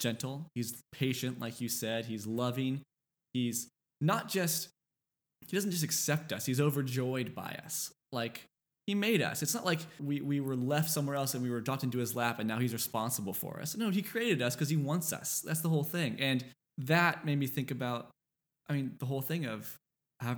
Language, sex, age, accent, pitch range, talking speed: English, male, 20-39, American, 125-160 Hz, 205 wpm